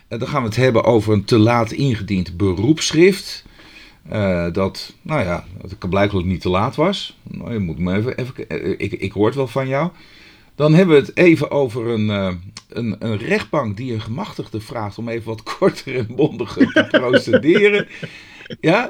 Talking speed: 190 wpm